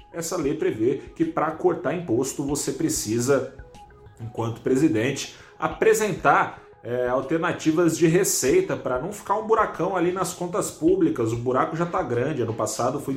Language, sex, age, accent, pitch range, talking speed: Portuguese, male, 30-49, Brazilian, 110-160 Hz, 145 wpm